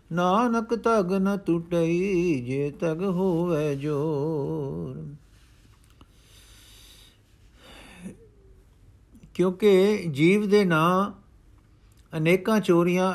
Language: Punjabi